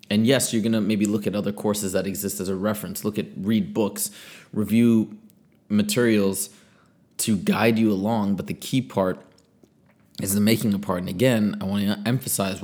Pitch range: 100-120 Hz